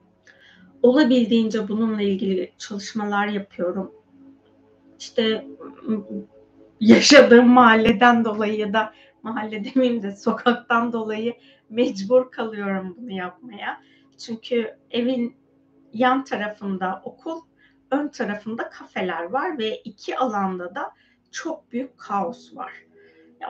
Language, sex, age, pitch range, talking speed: Turkish, female, 30-49, 205-260 Hz, 95 wpm